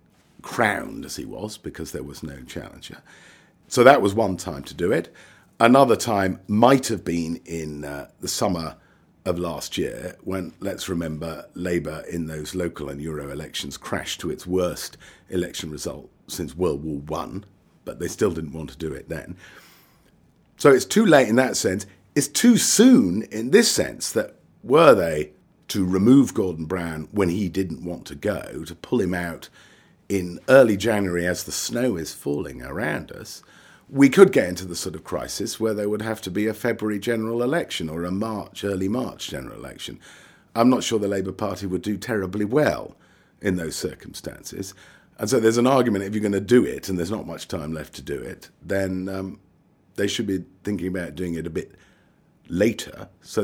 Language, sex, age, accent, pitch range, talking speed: English, male, 50-69, British, 85-110 Hz, 190 wpm